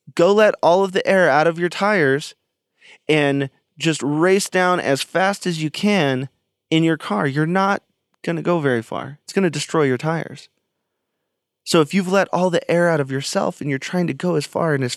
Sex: male